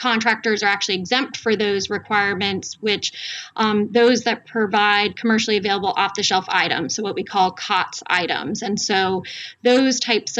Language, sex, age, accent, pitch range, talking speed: English, female, 20-39, American, 200-225 Hz, 150 wpm